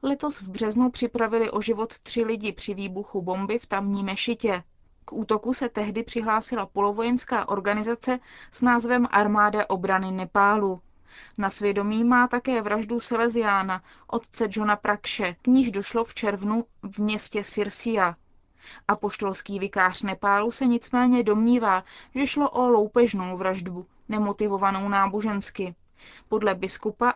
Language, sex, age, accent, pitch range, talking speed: Czech, female, 20-39, native, 200-240 Hz, 130 wpm